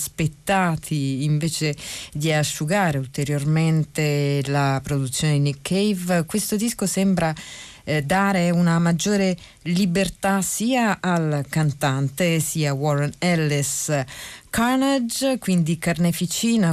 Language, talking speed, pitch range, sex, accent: Italian, 95 wpm, 145-180 Hz, female, native